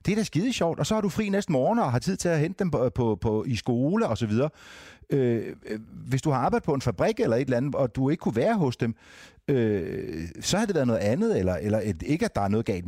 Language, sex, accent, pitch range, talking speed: Danish, male, native, 110-150 Hz, 280 wpm